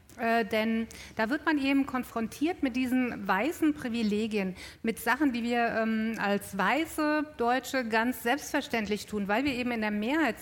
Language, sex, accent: German, female, German